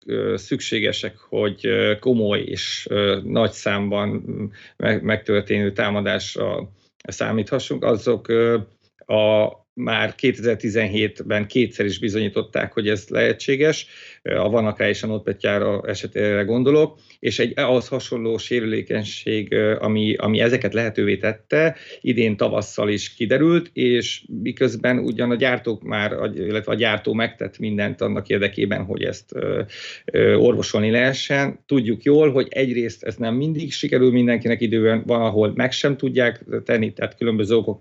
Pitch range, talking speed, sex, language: 110-125 Hz, 120 wpm, male, Hungarian